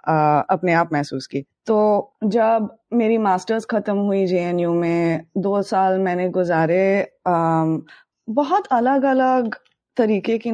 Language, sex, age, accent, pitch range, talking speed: Hindi, female, 20-39, native, 175-215 Hz, 130 wpm